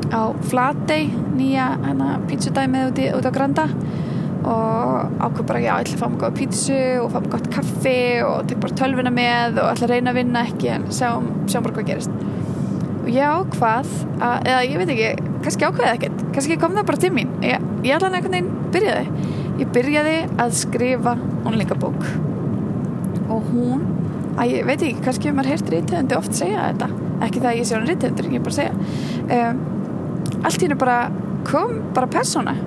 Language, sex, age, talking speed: English, female, 20-39, 150 wpm